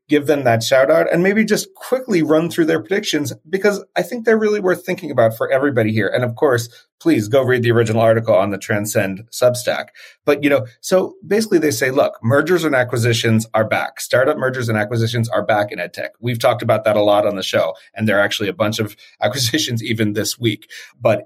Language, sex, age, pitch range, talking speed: English, male, 30-49, 105-140 Hz, 225 wpm